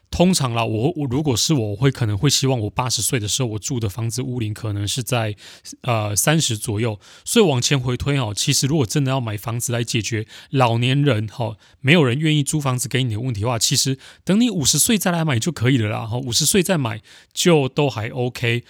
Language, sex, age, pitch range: Chinese, male, 20-39, 115-150 Hz